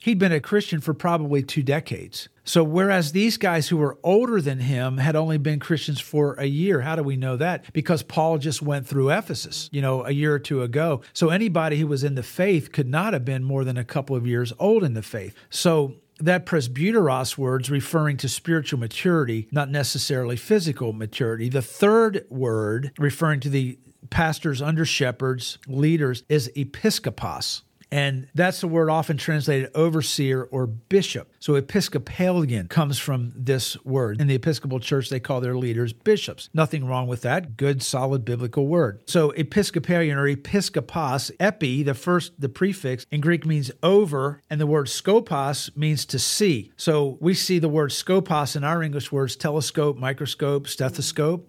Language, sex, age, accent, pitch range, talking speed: English, male, 50-69, American, 130-165 Hz, 175 wpm